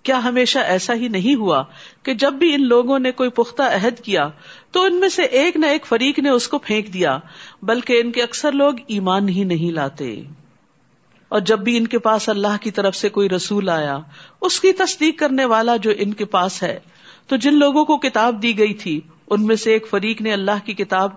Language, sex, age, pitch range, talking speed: Urdu, female, 50-69, 190-245 Hz, 220 wpm